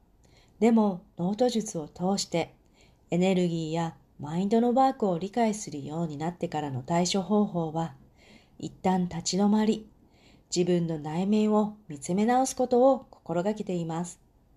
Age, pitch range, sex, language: 40-59, 170-215 Hz, female, Japanese